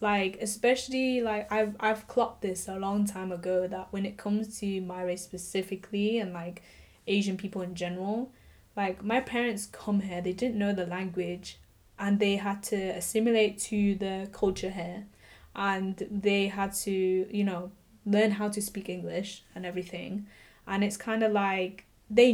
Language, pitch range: English, 185-220 Hz